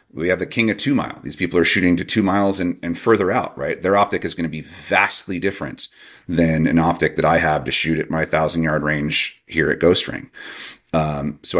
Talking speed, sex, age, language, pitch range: 240 wpm, male, 30-49, English, 80-100 Hz